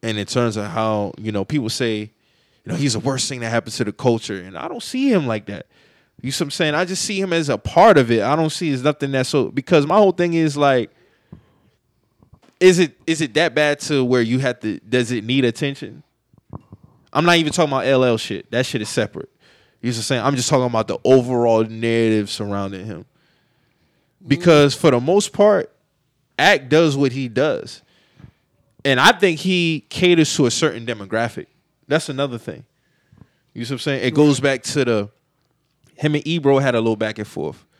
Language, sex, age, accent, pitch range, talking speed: English, male, 20-39, American, 115-150 Hz, 215 wpm